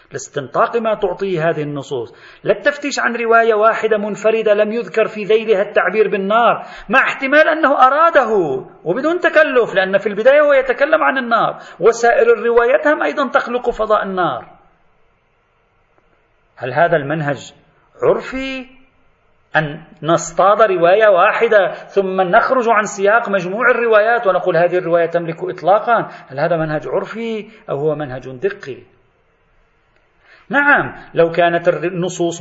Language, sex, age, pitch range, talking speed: Arabic, male, 40-59, 170-240 Hz, 125 wpm